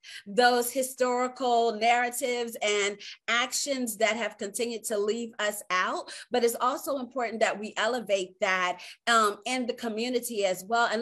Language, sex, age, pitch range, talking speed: Arabic, female, 30-49, 210-255 Hz, 145 wpm